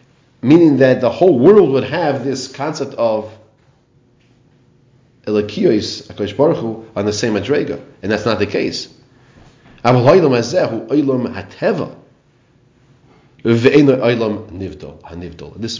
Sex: male